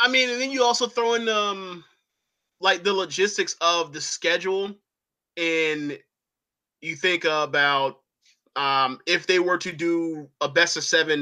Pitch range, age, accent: 150-195 Hz, 20-39, American